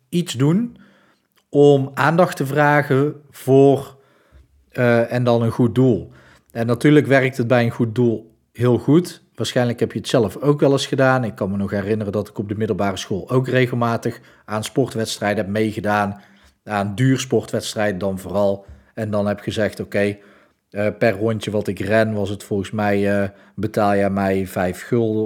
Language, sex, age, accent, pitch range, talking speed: Dutch, male, 40-59, Dutch, 100-130 Hz, 180 wpm